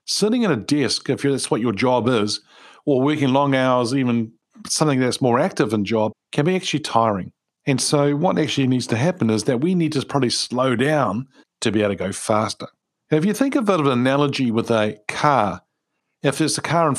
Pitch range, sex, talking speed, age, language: 115-140 Hz, male, 220 wpm, 50-69, English